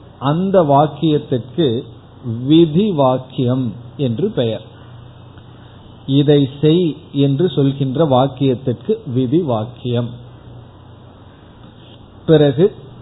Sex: male